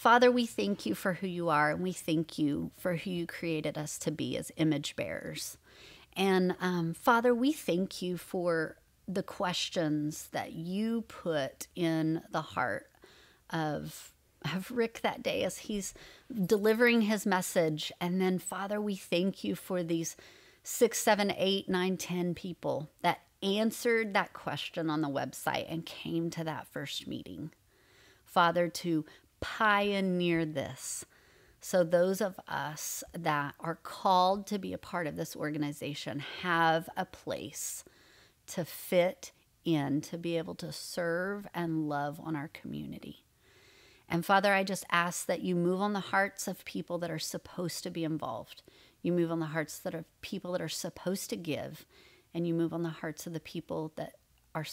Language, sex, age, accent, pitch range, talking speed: English, female, 30-49, American, 160-195 Hz, 165 wpm